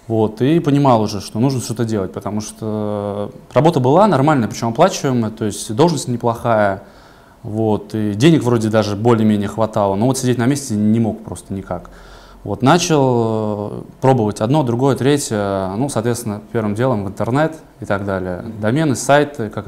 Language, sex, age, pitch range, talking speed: Russian, male, 20-39, 105-135 Hz, 160 wpm